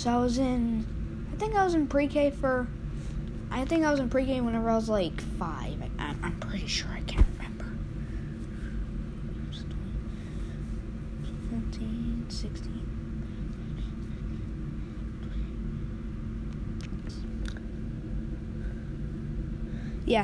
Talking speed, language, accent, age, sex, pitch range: 90 wpm, English, American, 20-39, female, 195-290 Hz